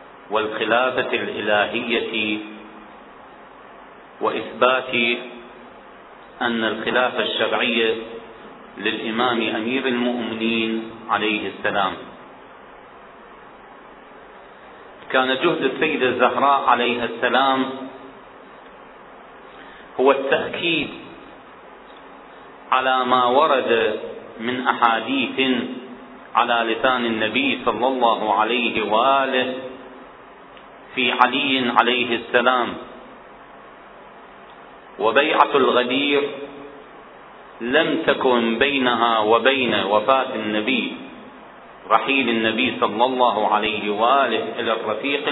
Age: 40-59